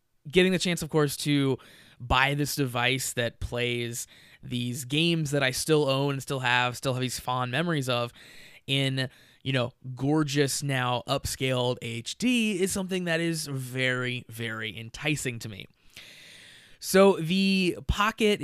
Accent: American